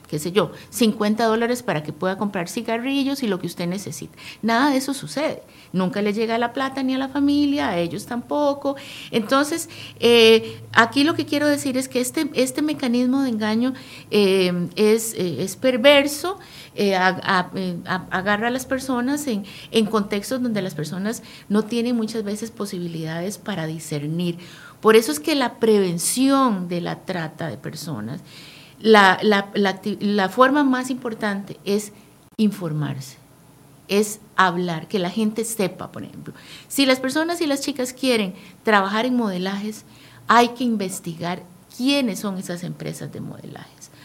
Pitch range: 185-260 Hz